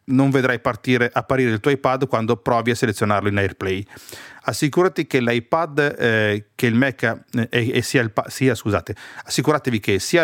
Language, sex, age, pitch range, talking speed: Italian, male, 40-59, 110-145 Hz, 90 wpm